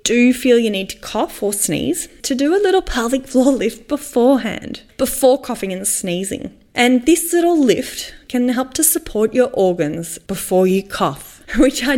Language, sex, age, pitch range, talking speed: English, female, 10-29, 190-275 Hz, 175 wpm